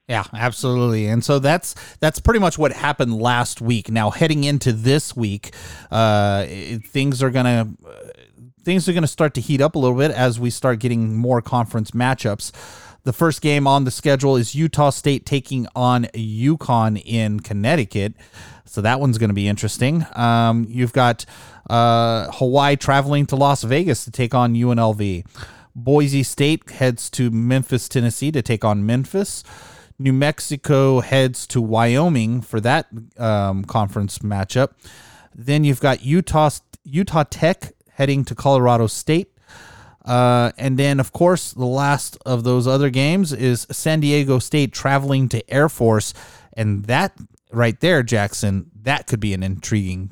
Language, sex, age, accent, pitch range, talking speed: English, male, 30-49, American, 110-140 Hz, 155 wpm